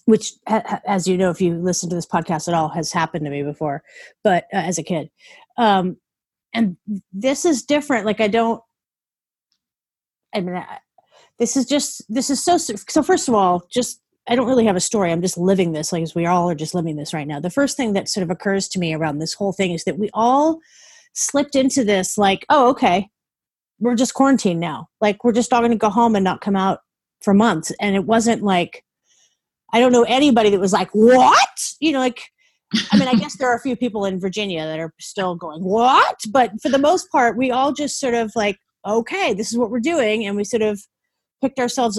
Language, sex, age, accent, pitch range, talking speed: English, female, 30-49, American, 185-250 Hz, 225 wpm